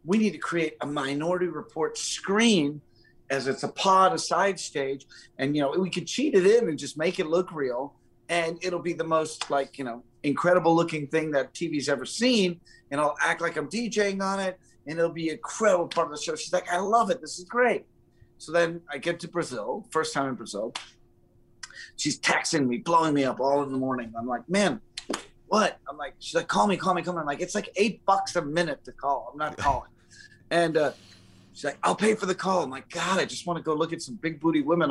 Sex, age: male, 30-49